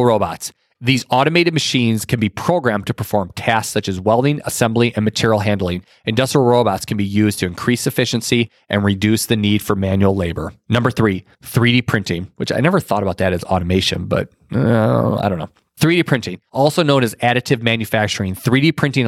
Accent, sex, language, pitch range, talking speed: American, male, English, 100-120 Hz, 180 wpm